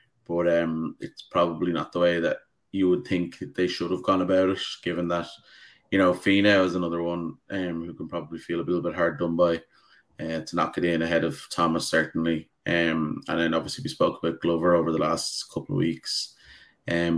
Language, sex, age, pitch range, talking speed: English, male, 20-39, 85-90 Hz, 210 wpm